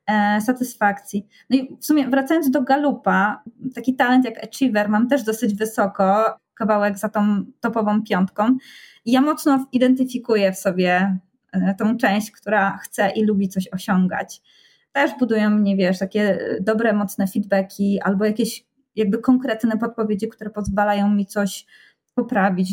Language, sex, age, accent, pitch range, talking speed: Polish, female, 20-39, native, 210-260 Hz, 140 wpm